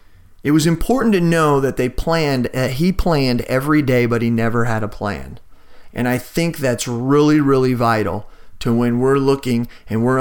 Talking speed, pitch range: 190 wpm, 130-170 Hz